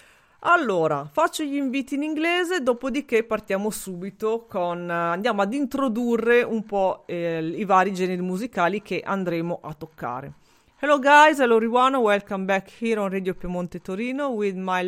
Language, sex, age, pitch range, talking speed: Italian, female, 40-59, 185-245 Hz, 145 wpm